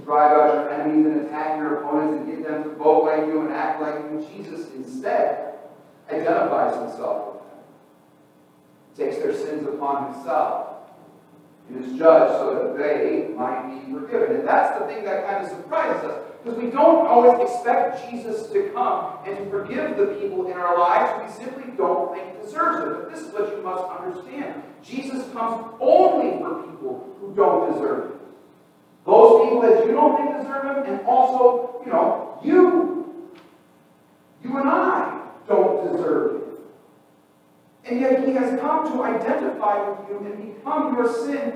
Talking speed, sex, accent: 170 wpm, male, American